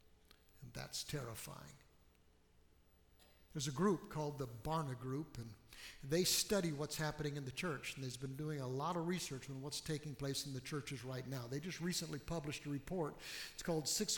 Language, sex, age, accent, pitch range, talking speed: English, male, 60-79, American, 135-195 Hz, 180 wpm